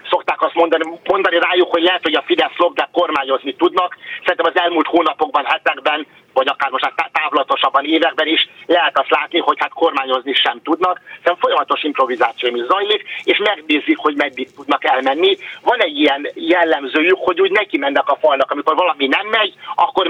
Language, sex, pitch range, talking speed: Hungarian, male, 150-195 Hz, 175 wpm